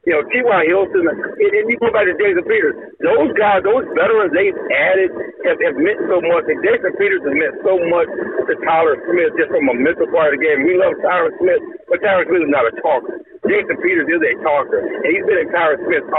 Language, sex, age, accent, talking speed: English, male, 60-79, American, 230 wpm